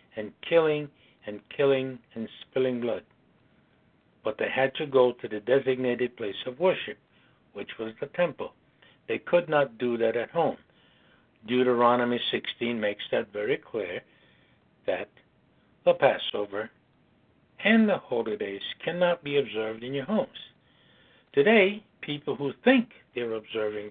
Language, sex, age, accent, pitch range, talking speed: English, male, 60-79, American, 115-195 Hz, 135 wpm